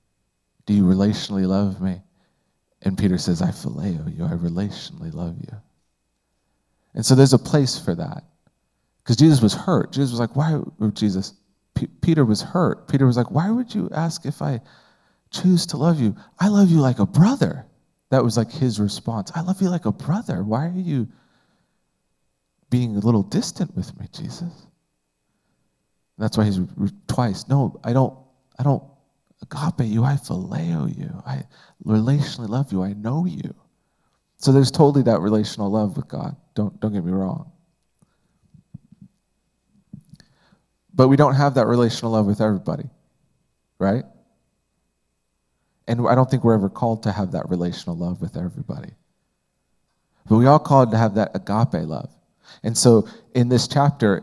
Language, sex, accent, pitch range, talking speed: English, male, American, 100-145 Hz, 165 wpm